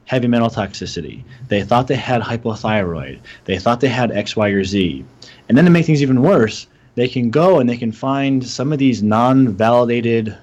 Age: 30-49